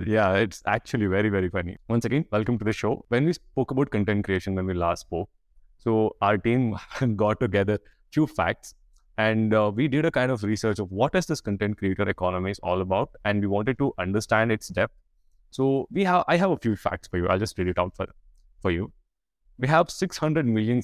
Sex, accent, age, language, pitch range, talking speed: male, Indian, 20-39, English, 95-125 Hz, 220 wpm